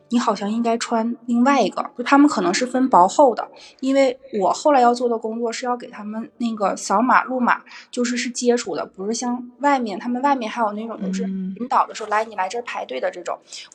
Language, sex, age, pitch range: Chinese, female, 20-39, 215-255 Hz